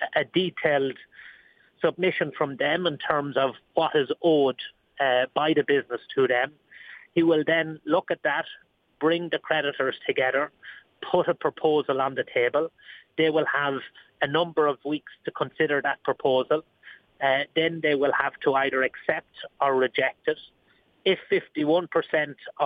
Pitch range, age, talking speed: 135-165 Hz, 30-49, 150 wpm